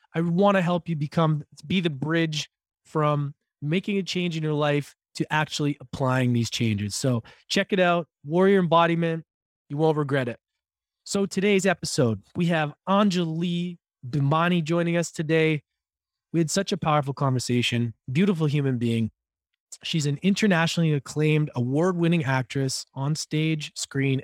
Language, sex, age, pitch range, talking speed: English, male, 20-39, 135-175 Hz, 145 wpm